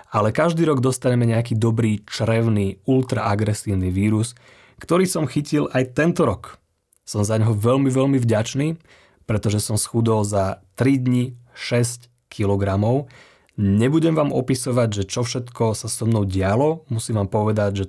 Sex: male